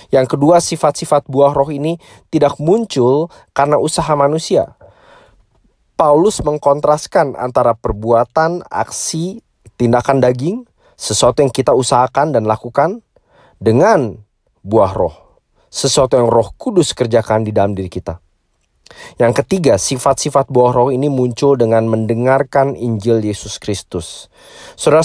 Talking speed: 115 wpm